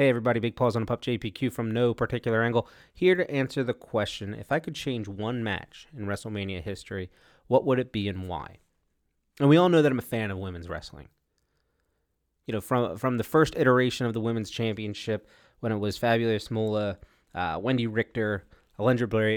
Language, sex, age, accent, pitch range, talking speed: English, male, 30-49, American, 90-125 Hz, 200 wpm